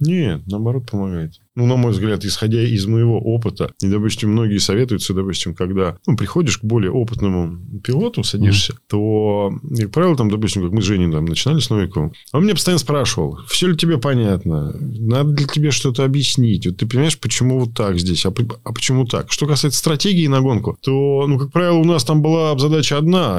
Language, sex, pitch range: Russian, male, 110-150 Hz